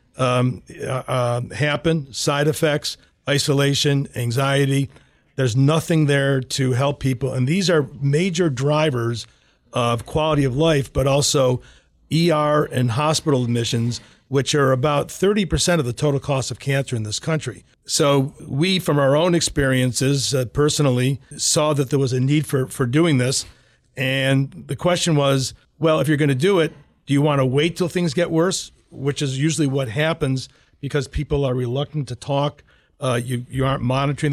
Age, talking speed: 50-69, 170 wpm